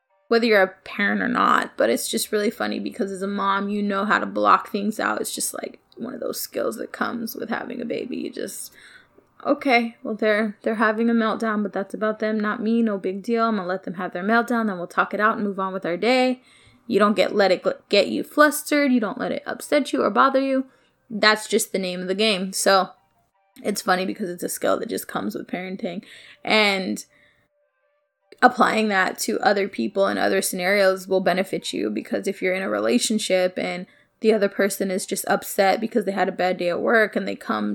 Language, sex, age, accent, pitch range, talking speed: English, female, 20-39, American, 190-235 Hz, 225 wpm